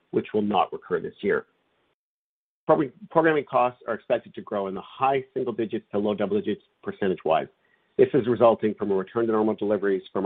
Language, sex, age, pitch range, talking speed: English, male, 50-69, 100-135 Hz, 185 wpm